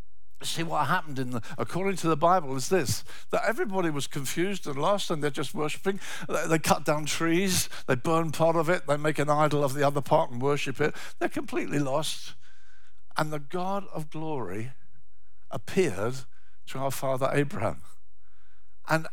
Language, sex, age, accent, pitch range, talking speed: English, male, 60-79, British, 130-190 Hz, 175 wpm